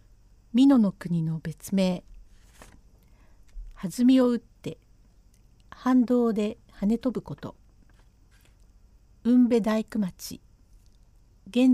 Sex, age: female, 50-69